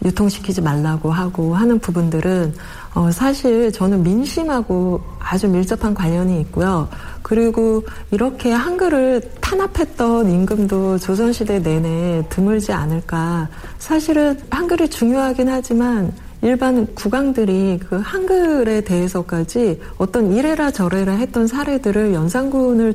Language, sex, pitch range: Korean, female, 175-235 Hz